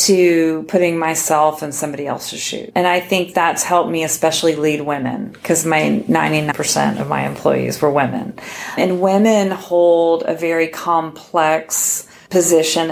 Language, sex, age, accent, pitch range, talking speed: English, female, 40-59, American, 155-175 Hz, 145 wpm